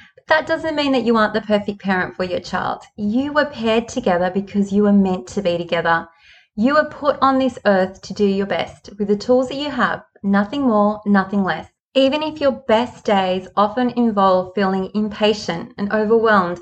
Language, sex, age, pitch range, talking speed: English, female, 20-39, 195-245 Hz, 195 wpm